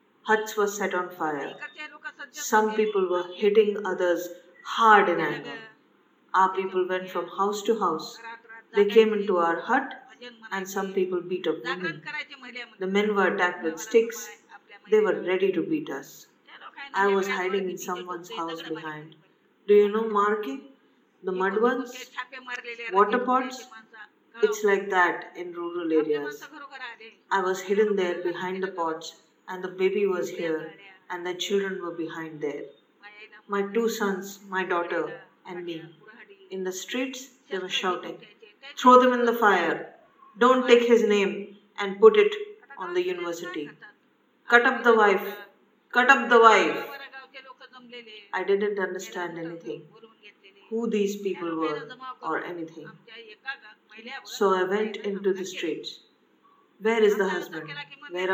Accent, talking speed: Indian, 145 wpm